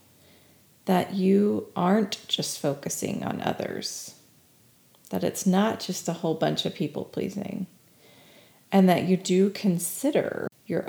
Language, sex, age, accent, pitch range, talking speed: English, female, 30-49, American, 165-205 Hz, 125 wpm